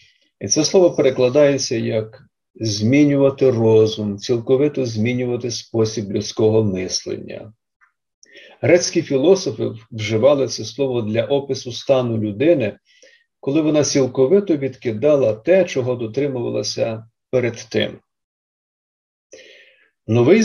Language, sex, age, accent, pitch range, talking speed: Ukrainian, male, 50-69, native, 110-135 Hz, 90 wpm